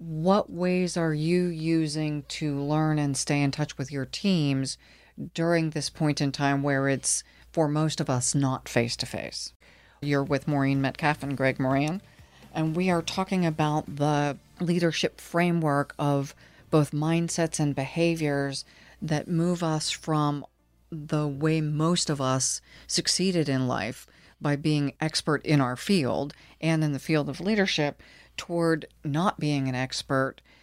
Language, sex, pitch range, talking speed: English, female, 140-165 Hz, 150 wpm